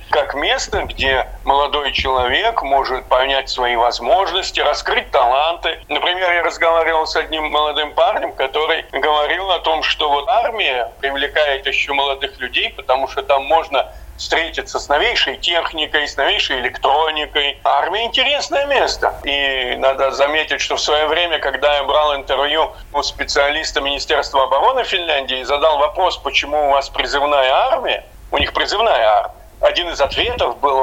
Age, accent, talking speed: 40-59, native, 150 wpm